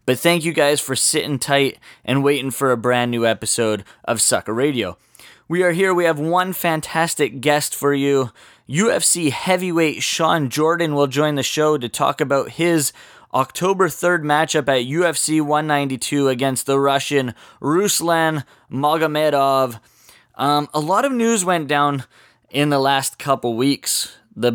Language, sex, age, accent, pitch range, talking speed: English, male, 20-39, American, 125-155 Hz, 150 wpm